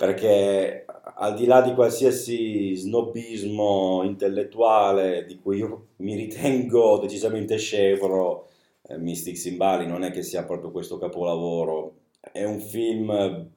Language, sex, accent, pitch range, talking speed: Italian, male, native, 90-105 Hz, 120 wpm